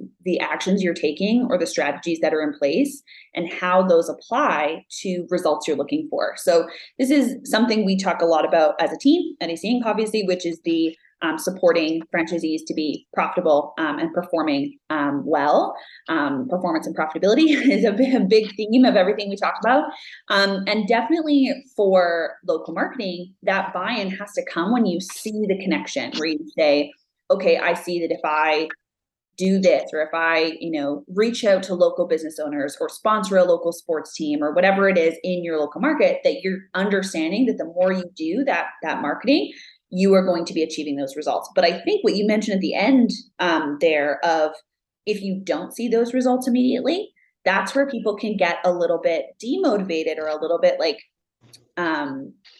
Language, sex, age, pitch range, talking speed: English, female, 20-39, 165-235 Hz, 190 wpm